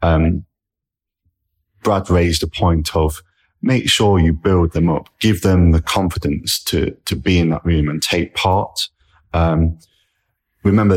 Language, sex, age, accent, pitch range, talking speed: English, male, 30-49, British, 80-95 Hz, 150 wpm